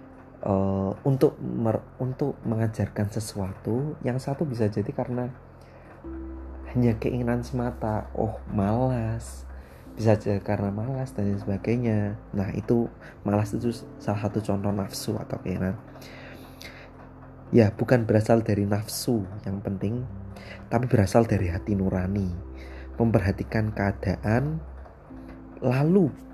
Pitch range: 100-125 Hz